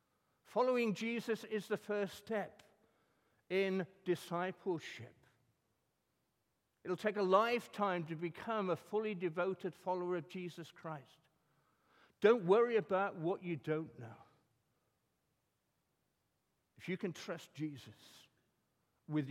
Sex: male